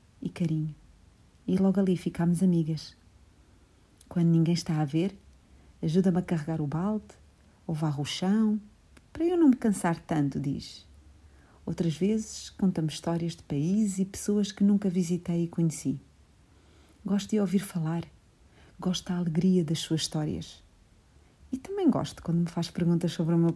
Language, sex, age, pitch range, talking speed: Portuguese, female, 40-59, 145-190 Hz, 155 wpm